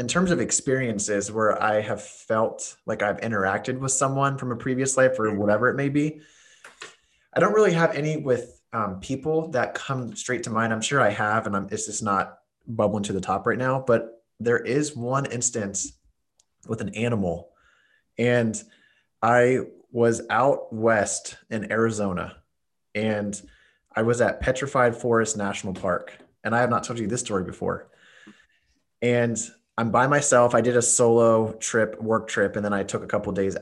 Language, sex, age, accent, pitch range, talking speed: English, male, 20-39, American, 100-120 Hz, 180 wpm